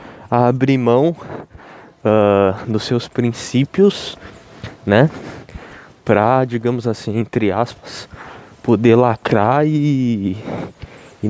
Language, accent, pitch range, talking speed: Portuguese, Brazilian, 105-135 Hz, 90 wpm